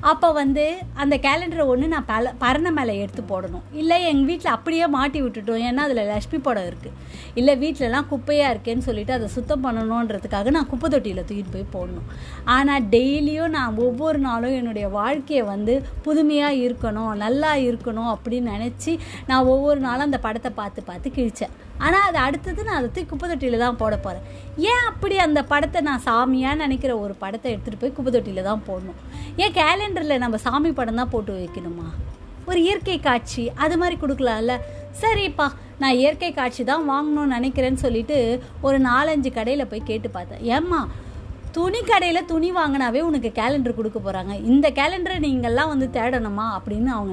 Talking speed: 115 wpm